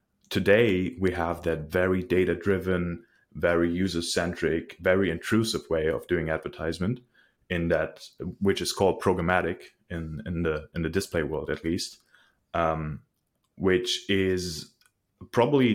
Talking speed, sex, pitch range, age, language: 135 wpm, male, 85-100 Hz, 30-49, English